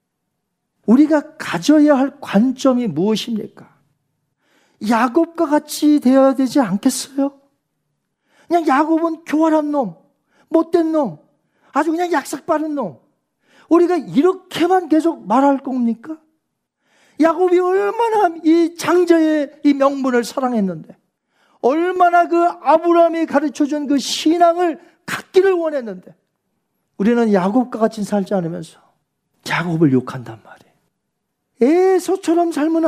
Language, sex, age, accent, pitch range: Korean, male, 40-59, native, 225-315 Hz